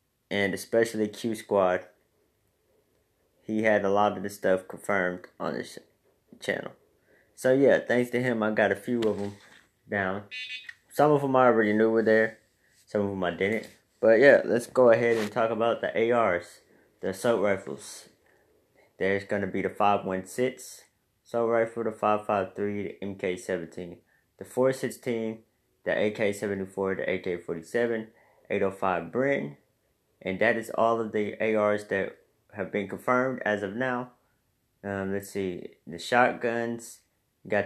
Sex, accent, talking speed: male, American, 150 wpm